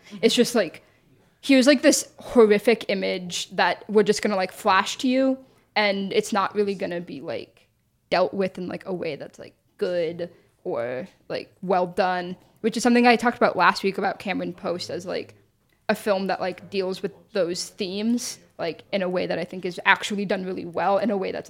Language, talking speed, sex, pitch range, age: English, 210 wpm, female, 190-230 Hz, 10-29